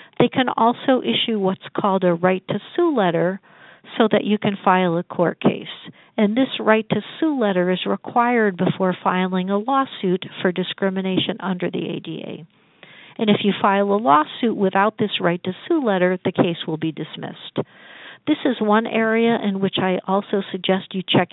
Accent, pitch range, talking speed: American, 185-230 Hz, 180 wpm